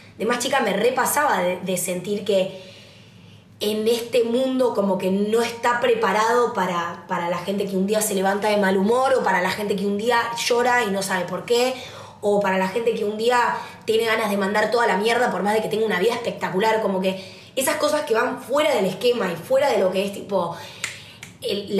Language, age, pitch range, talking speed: Spanish, 20-39, 185-235 Hz, 225 wpm